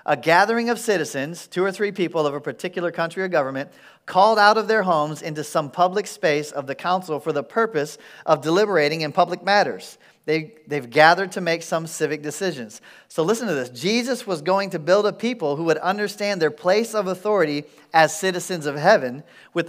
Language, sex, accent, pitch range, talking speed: English, male, American, 160-205 Hz, 200 wpm